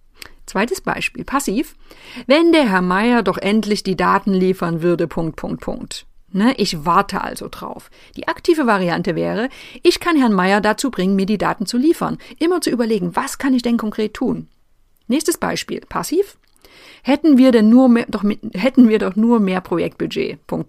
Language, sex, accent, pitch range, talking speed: German, female, German, 185-245 Hz, 160 wpm